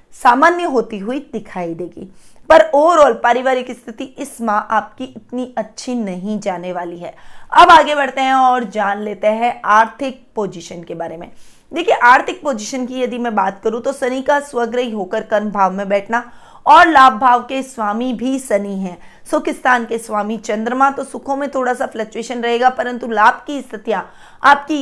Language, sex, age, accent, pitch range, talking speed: Hindi, female, 20-39, native, 215-260 Hz, 170 wpm